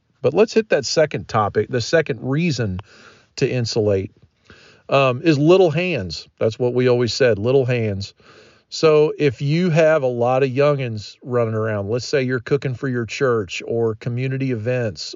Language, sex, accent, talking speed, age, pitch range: English, male, American, 165 wpm, 40-59, 120-150 Hz